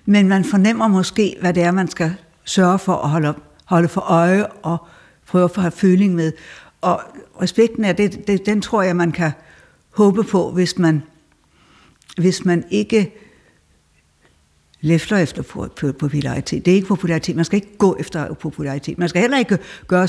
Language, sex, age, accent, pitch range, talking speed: Danish, female, 60-79, native, 165-205 Hz, 170 wpm